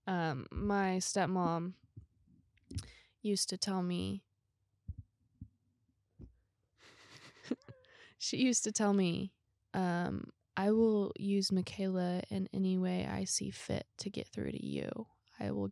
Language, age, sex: English, 20-39, female